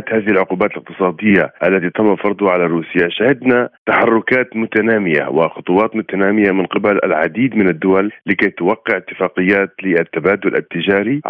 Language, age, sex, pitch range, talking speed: Arabic, 40-59, male, 90-110 Hz, 120 wpm